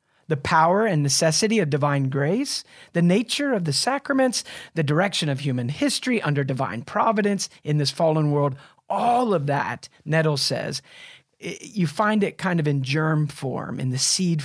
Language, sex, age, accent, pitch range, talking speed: English, male, 40-59, American, 140-185 Hz, 165 wpm